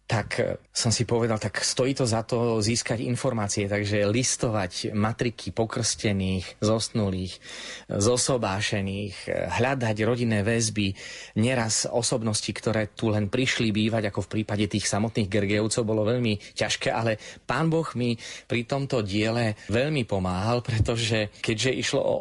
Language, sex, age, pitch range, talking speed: Slovak, male, 30-49, 105-120 Hz, 130 wpm